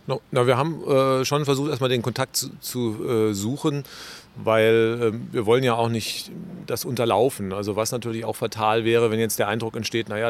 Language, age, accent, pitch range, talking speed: German, 40-59, German, 105-125 Hz, 205 wpm